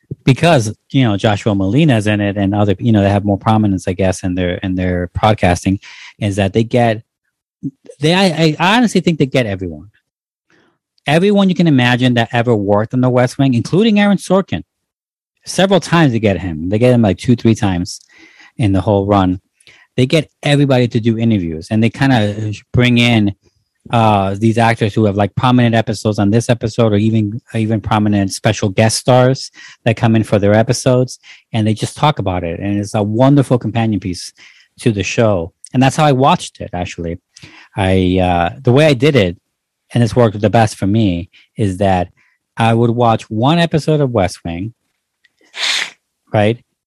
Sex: male